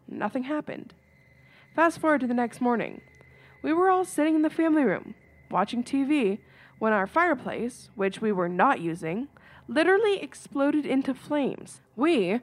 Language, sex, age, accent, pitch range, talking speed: English, female, 20-39, American, 205-290 Hz, 150 wpm